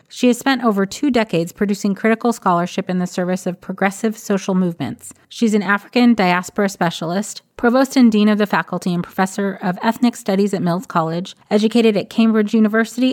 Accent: American